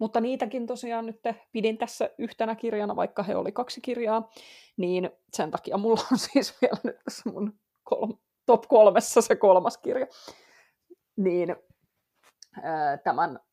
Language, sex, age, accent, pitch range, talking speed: English, female, 30-49, Finnish, 170-235 Hz, 140 wpm